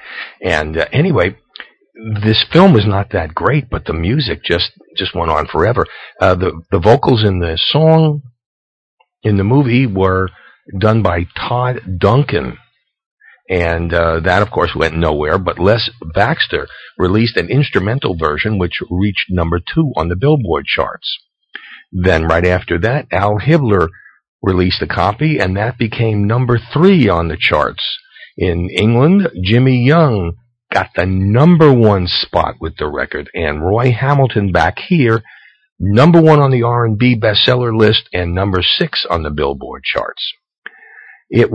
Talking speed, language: 150 wpm, English